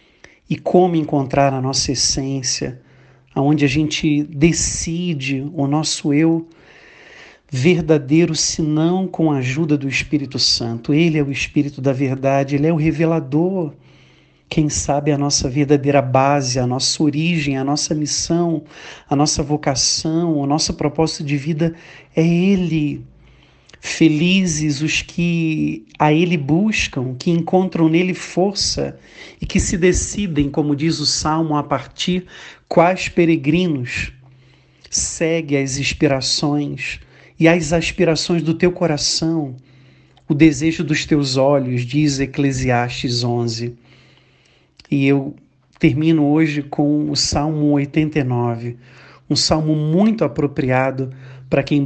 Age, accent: 50-69, Brazilian